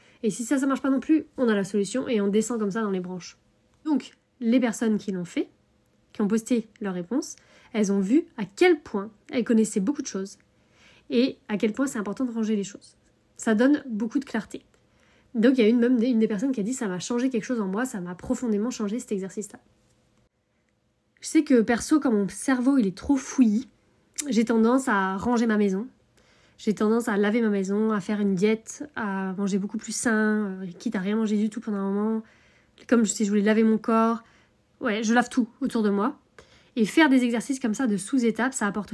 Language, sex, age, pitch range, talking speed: French, female, 20-39, 205-245 Hz, 230 wpm